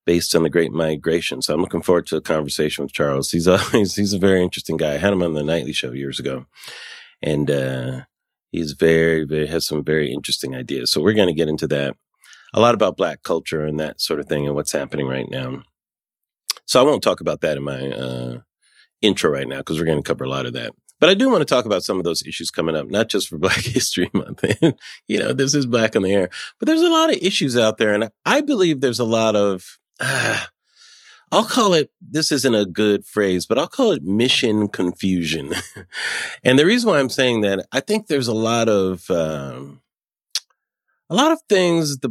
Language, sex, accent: English, male, American